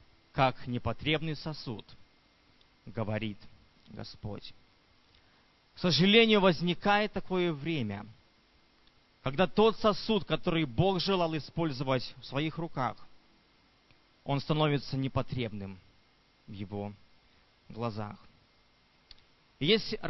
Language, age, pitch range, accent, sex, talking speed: Russian, 20-39, 115-175 Hz, native, male, 80 wpm